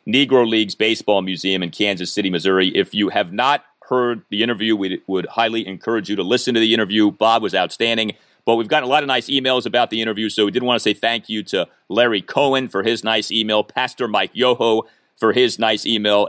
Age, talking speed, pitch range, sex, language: 40-59, 225 wpm, 105-135 Hz, male, English